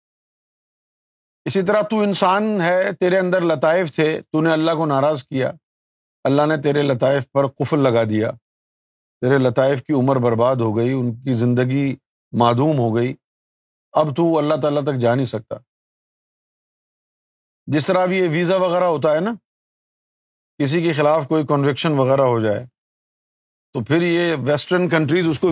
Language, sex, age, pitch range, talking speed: Urdu, male, 50-69, 125-175 Hz, 160 wpm